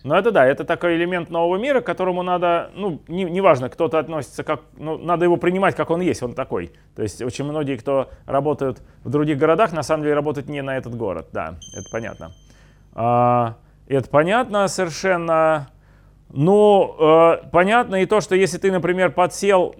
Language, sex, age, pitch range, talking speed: Russian, male, 30-49, 140-180 Hz, 175 wpm